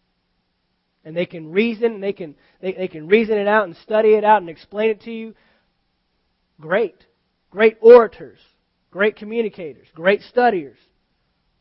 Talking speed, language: 150 wpm, English